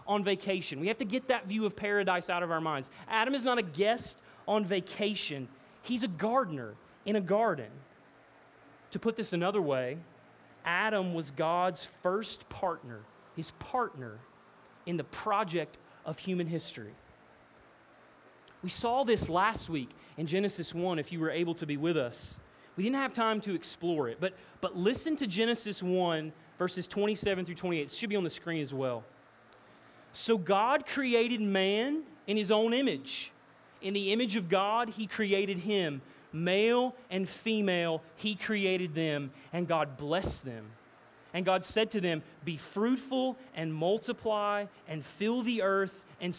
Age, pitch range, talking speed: 30-49, 160-220 Hz, 160 wpm